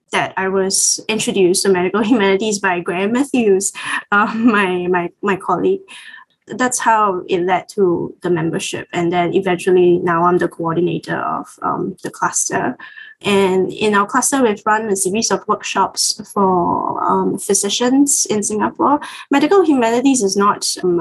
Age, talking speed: 20-39, 150 wpm